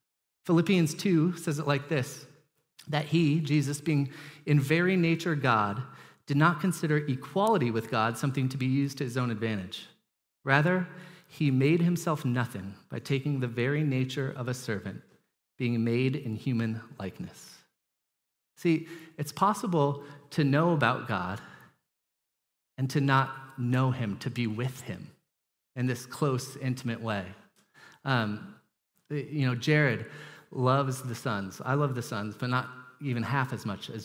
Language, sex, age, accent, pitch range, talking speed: English, male, 40-59, American, 125-155 Hz, 150 wpm